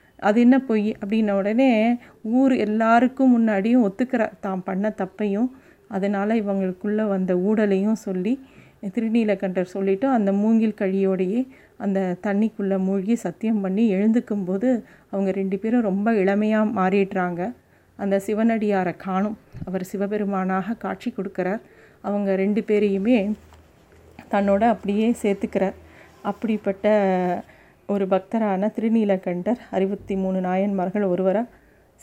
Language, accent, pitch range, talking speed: Tamil, native, 190-220 Hz, 100 wpm